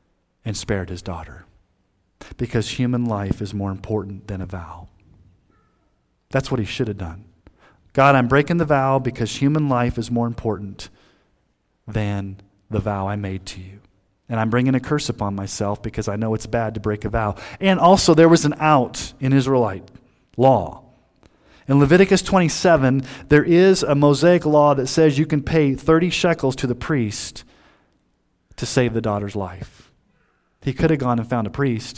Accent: American